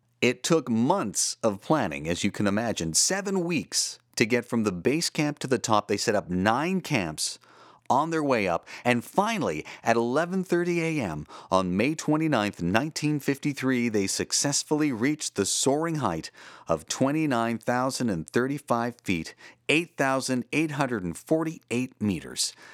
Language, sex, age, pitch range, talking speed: English, male, 40-59, 105-155 Hz, 130 wpm